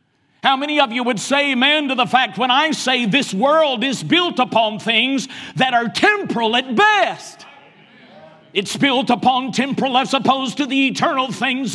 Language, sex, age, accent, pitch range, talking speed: English, male, 50-69, American, 165-270 Hz, 175 wpm